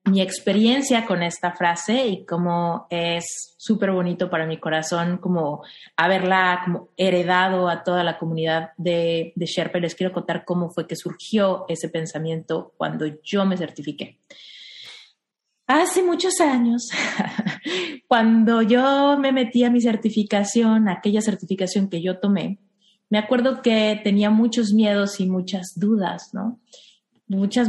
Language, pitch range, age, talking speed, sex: Spanish, 180-220 Hz, 30-49, 135 wpm, female